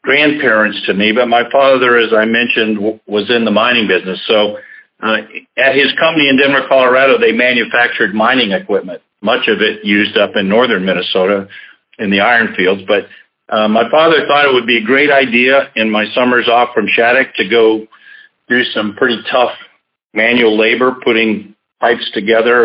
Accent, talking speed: American, 180 wpm